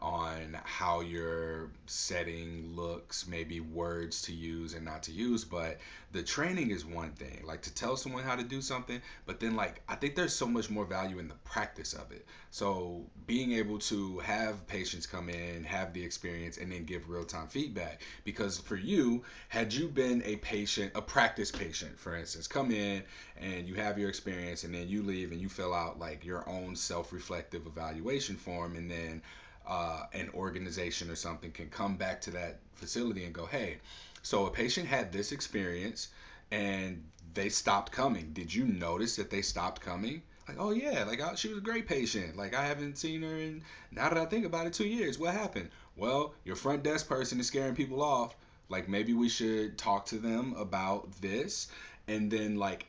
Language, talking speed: English, 195 wpm